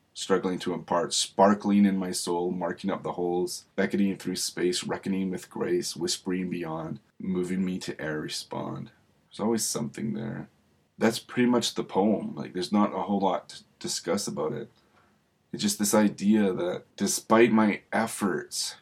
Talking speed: 165 wpm